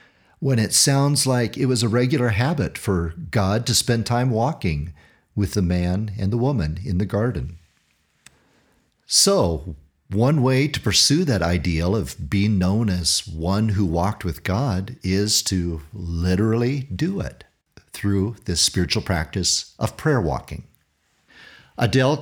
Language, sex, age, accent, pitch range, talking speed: English, male, 50-69, American, 90-125 Hz, 145 wpm